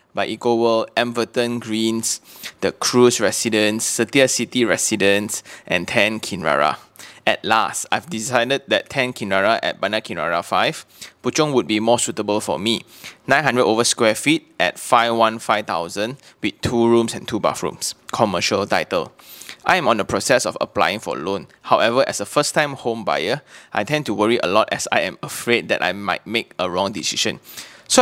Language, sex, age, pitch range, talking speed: English, male, 20-39, 110-125 Hz, 180 wpm